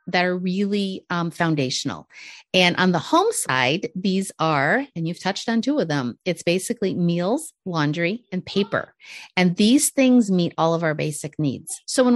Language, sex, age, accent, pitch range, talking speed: English, female, 40-59, American, 155-205 Hz, 180 wpm